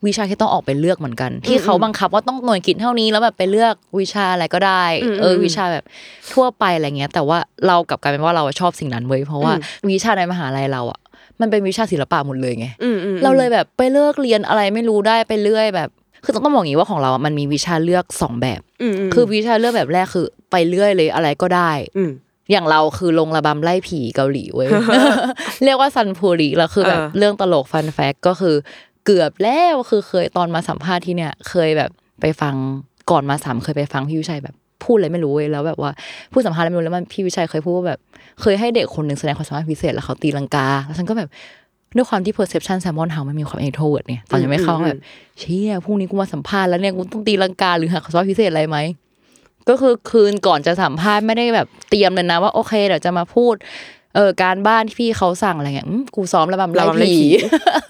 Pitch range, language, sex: 155-215 Hz, Thai, female